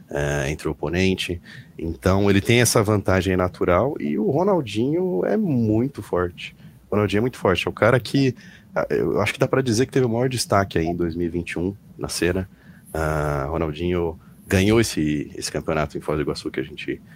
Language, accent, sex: Portuguese, Brazilian, male